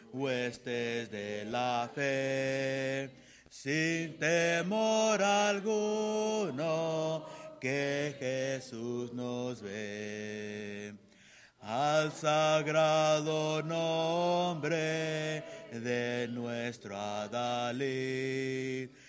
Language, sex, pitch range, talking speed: English, male, 125-165 Hz, 55 wpm